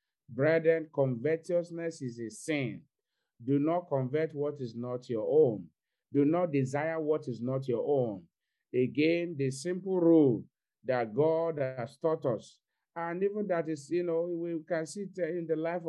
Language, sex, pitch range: English, male, 125-160 Hz